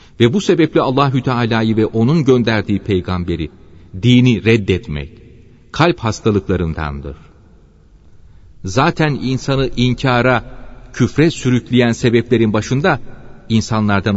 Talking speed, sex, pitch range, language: 90 wpm, male, 100-130 Hz, Turkish